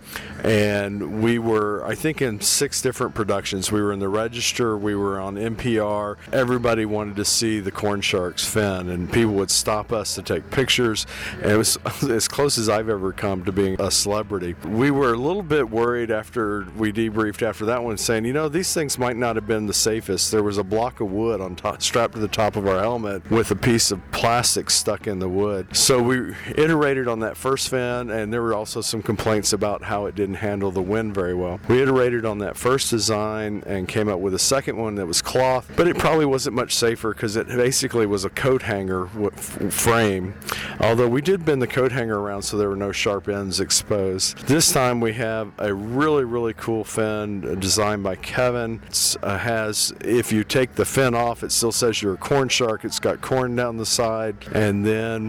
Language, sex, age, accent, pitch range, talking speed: English, male, 40-59, American, 100-120 Hz, 215 wpm